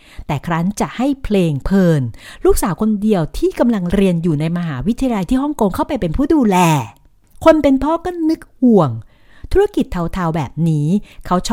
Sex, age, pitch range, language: female, 60-79, 160-250 Hz, Thai